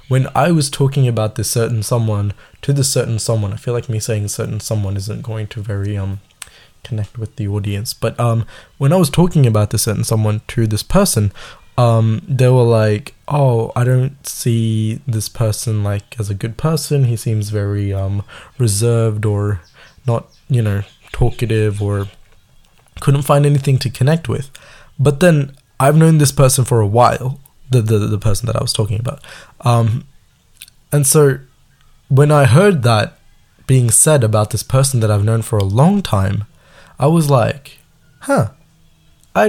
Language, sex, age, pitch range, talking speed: Tamil, male, 20-39, 110-140 Hz, 175 wpm